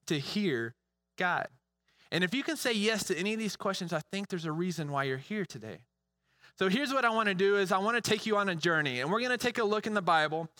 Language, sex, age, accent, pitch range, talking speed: English, male, 20-39, American, 150-200 Hz, 260 wpm